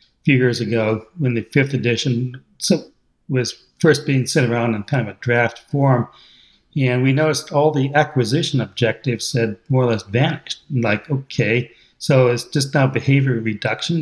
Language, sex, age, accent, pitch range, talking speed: English, male, 60-79, American, 120-145 Hz, 165 wpm